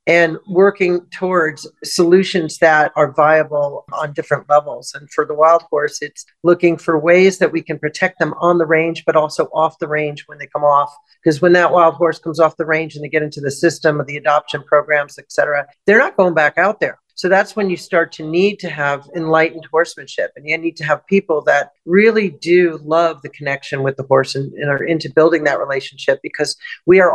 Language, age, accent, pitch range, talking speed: English, 50-69, American, 150-180 Hz, 220 wpm